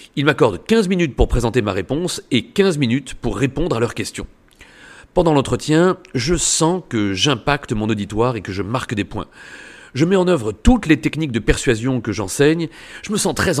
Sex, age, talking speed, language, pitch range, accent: male, 40-59, 200 wpm, French, 115-165 Hz, French